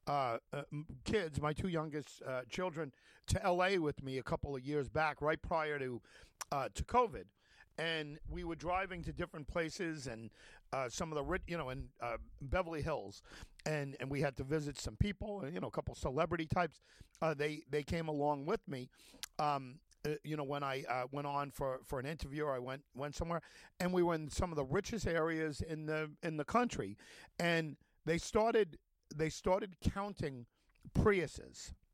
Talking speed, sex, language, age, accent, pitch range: 190 wpm, male, English, 50-69, American, 125-170 Hz